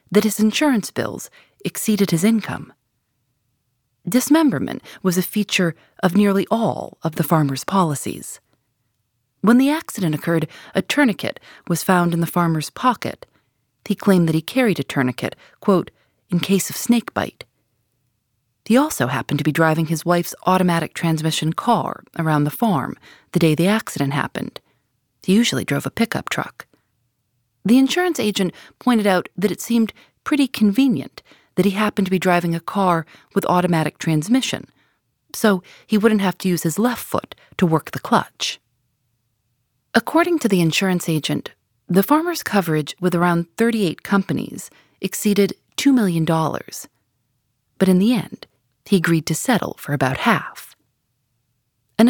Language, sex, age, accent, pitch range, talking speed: English, female, 30-49, American, 140-210 Hz, 150 wpm